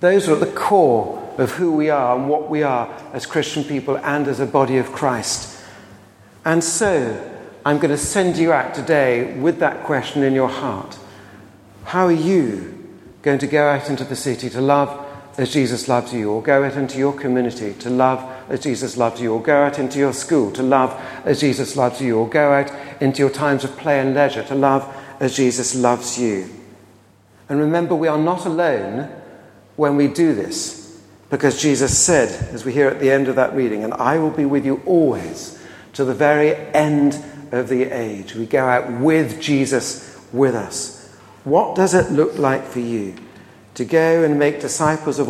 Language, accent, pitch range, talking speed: English, British, 125-150 Hz, 195 wpm